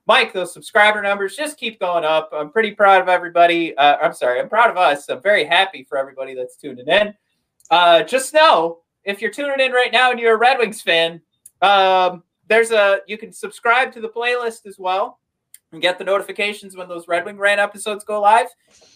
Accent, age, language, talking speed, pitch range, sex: American, 30-49, English, 205 wpm, 180-240 Hz, male